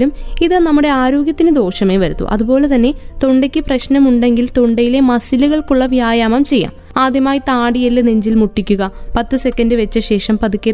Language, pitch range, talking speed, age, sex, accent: Malayalam, 235-280 Hz, 125 wpm, 20-39, female, native